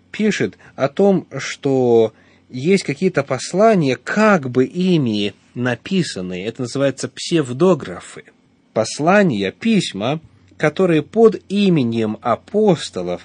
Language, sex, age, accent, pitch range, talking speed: Russian, male, 30-49, native, 105-155 Hz, 90 wpm